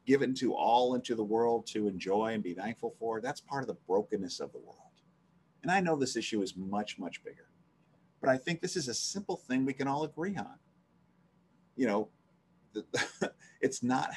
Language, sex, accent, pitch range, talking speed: English, male, American, 105-155 Hz, 195 wpm